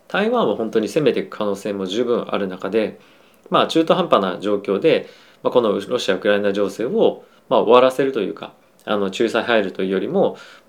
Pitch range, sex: 100-130 Hz, male